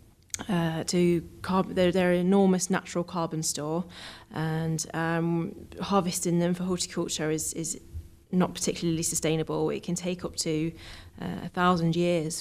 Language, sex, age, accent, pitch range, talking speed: English, female, 20-39, British, 155-175 Hz, 145 wpm